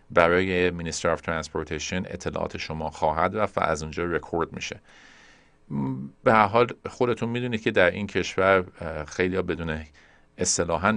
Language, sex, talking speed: Persian, male, 130 wpm